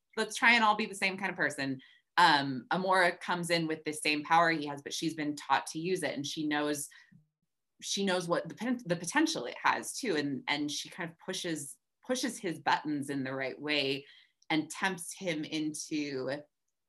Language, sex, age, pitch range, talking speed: English, female, 20-39, 145-175 Hz, 205 wpm